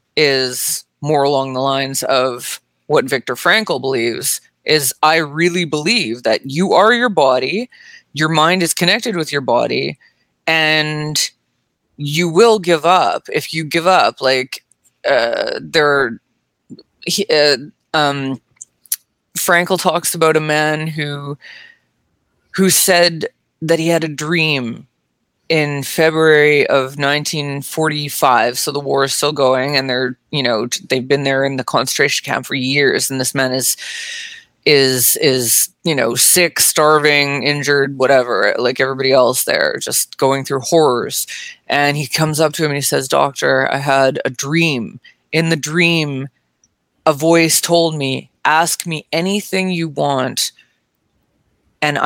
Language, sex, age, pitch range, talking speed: English, female, 20-39, 135-165 Hz, 145 wpm